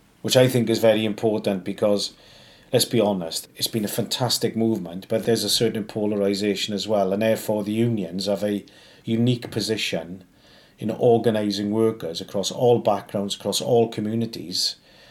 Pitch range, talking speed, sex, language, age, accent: 105-120 Hz, 155 wpm, male, English, 40-59, British